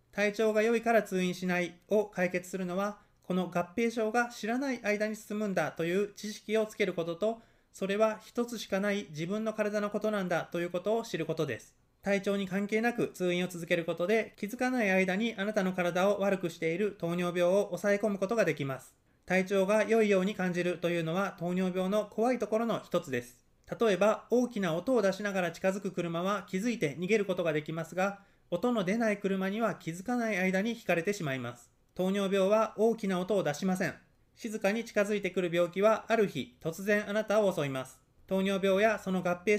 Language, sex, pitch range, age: Japanese, male, 175-215 Hz, 20-39